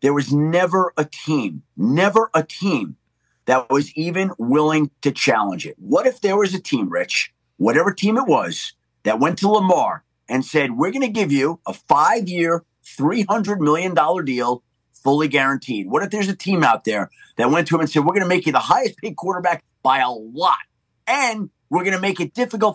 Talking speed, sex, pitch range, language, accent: 200 wpm, male, 150-220 Hz, English, American